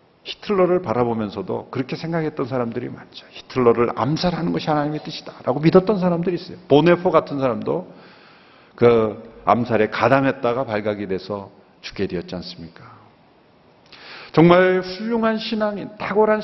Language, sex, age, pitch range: Korean, male, 50-69, 115-190 Hz